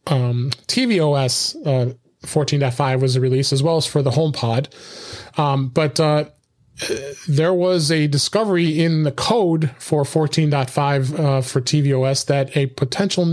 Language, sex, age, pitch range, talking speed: English, male, 30-49, 135-160 Hz, 135 wpm